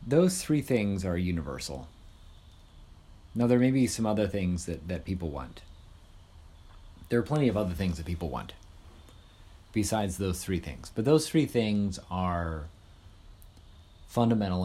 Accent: American